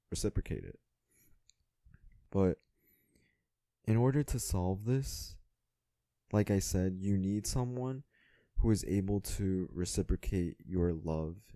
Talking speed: 110 wpm